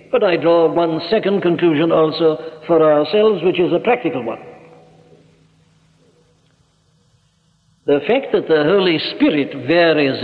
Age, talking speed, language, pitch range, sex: 60-79, 115 wpm, English, 155-185 Hz, male